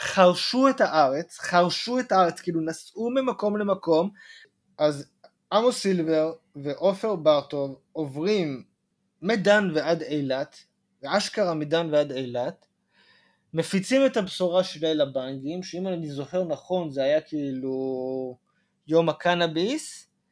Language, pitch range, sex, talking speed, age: Hebrew, 155-205 Hz, male, 110 wpm, 20-39